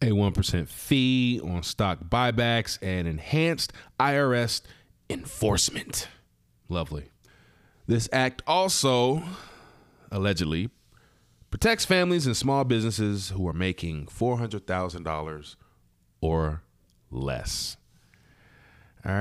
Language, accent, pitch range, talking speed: English, American, 90-125 Hz, 85 wpm